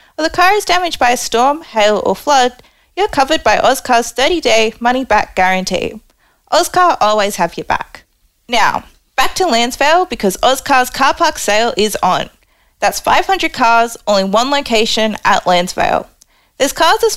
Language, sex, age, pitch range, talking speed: English, female, 20-39, 205-290 Hz, 155 wpm